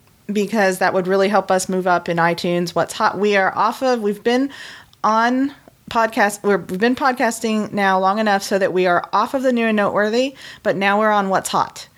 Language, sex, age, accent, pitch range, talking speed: English, female, 30-49, American, 175-210 Hz, 215 wpm